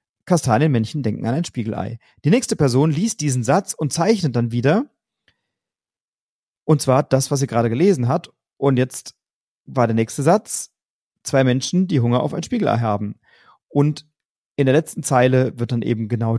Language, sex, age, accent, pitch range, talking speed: German, male, 40-59, German, 120-165 Hz, 170 wpm